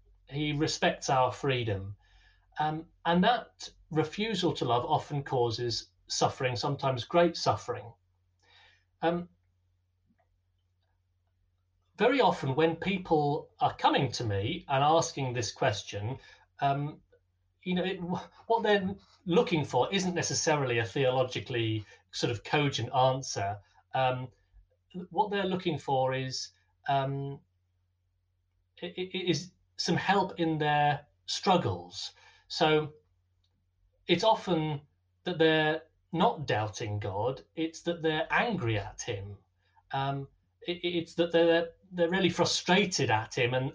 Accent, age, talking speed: British, 30-49, 115 wpm